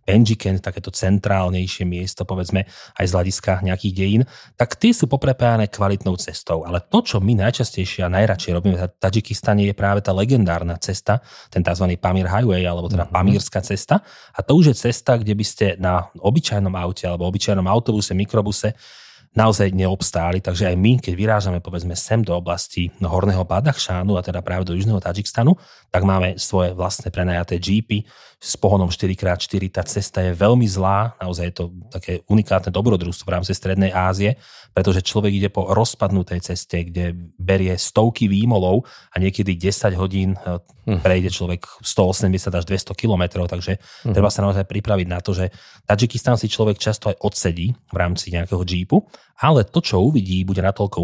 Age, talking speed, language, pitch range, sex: 30-49, 165 wpm, Slovak, 90-105 Hz, male